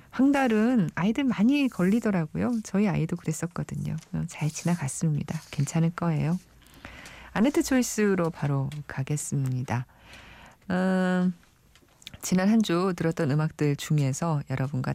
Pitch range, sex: 140-200 Hz, female